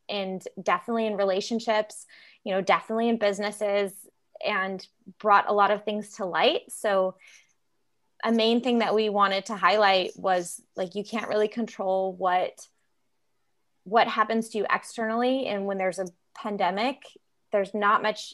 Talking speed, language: 150 wpm, English